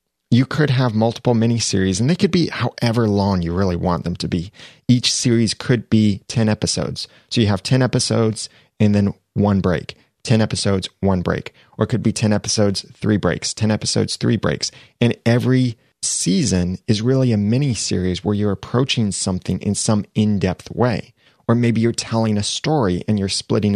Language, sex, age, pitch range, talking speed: English, male, 30-49, 100-120 Hz, 190 wpm